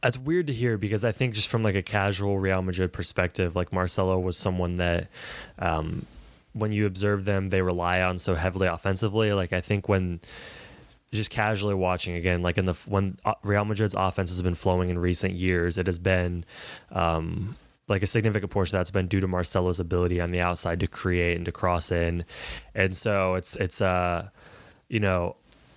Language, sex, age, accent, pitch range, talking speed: English, male, 20-39, American, 90-105 Hz, 195 wpm